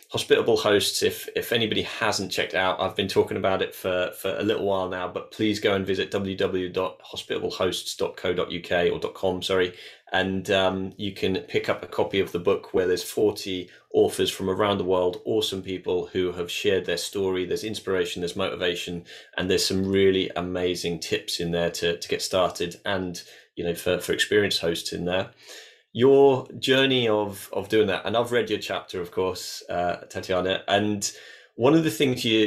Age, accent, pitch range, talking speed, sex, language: 20-39, British, 90-110 Hz, 185 wpm, male, English